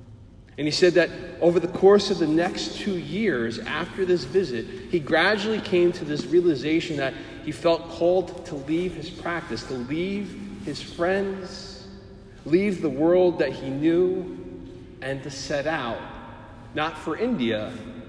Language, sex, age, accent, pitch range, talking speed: English, male, 40-59, American, 120-160 Hz, 155 wpm